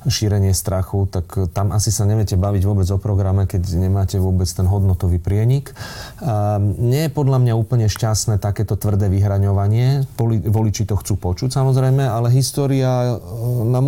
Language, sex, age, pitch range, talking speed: Slovak, male, 30-49, 95-115 Hz, 150 wpm